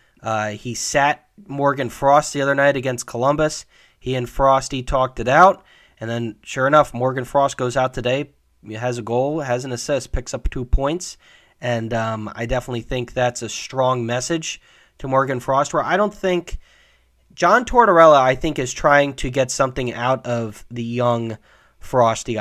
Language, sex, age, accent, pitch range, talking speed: English, male, 20-39, American, 120-145 Hz, 170 wpm